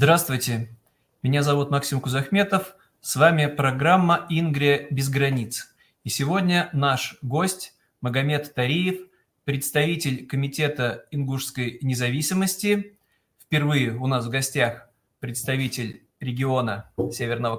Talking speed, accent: 100 wpm, native